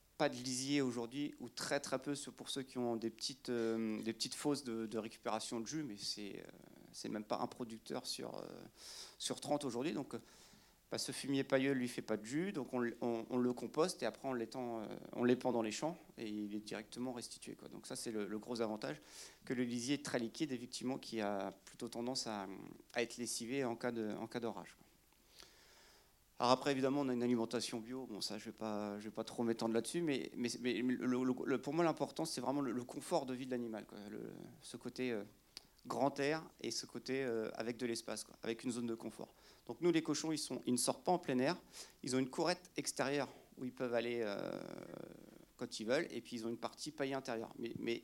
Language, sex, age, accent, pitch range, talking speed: French, male, 40-59, French, 115-135 Hz, 230 wpm